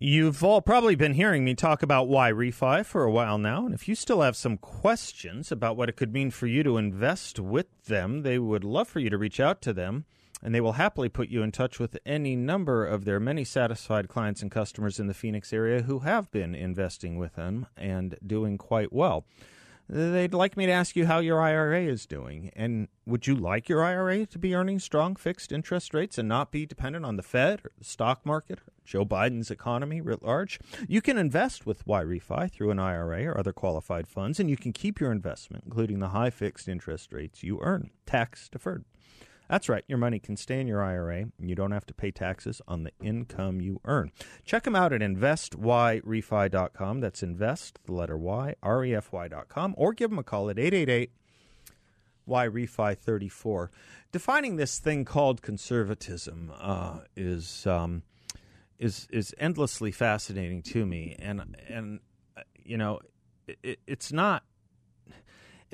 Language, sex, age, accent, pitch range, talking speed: English, male, 40-59, American, 100-145 Hz, 195 wpm